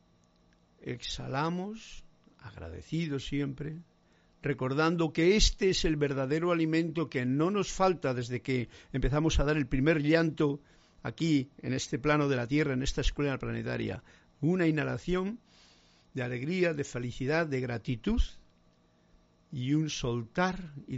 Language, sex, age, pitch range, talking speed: Spanish, male, 60-79, 125-165 Hz, 130 wpm